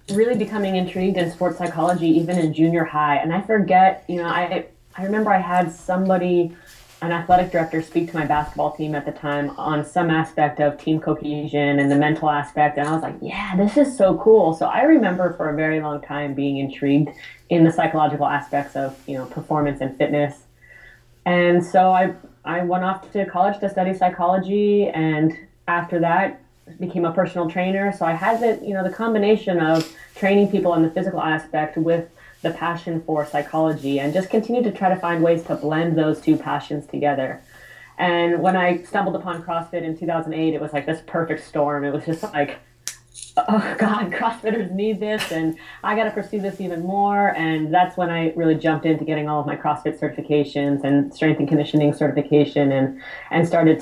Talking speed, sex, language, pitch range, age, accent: 195 wpm, female, English, 150-185 Hz, 20-39, American